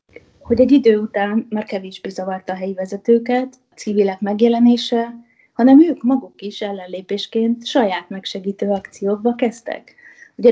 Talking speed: 130 wpm